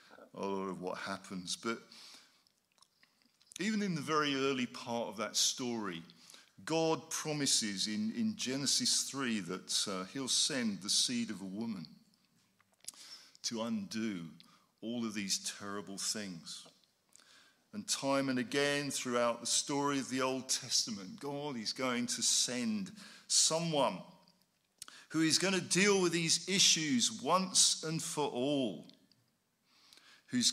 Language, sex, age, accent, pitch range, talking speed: English, male, 50-69, British, 110-170 Hz, 130 wpm